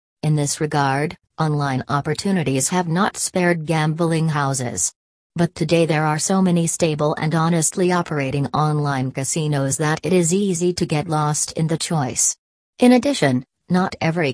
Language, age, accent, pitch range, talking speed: English, 40-59, American, 145-180 Hz, 150 wpm